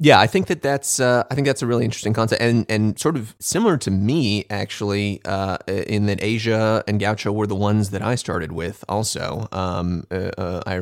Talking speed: 215 wpm